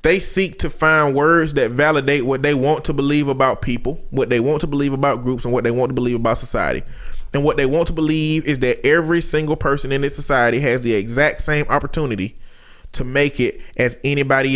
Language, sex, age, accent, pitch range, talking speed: English, male, 20-39, American, 135-175 Hz, 220 wpm